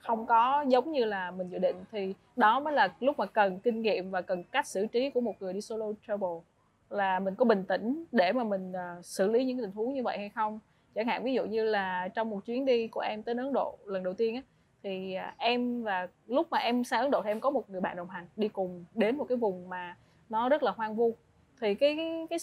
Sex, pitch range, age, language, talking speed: female, 195-250 Hz, 20-39, Vietnamese, 255 wpm